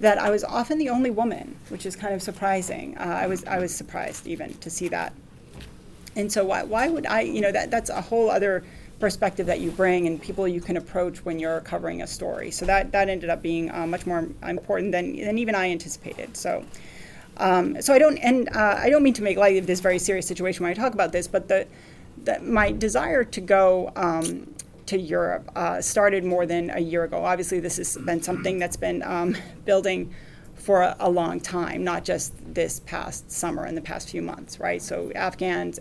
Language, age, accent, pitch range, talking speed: English, 30-49, American, 175-210 Hz, 220 wpm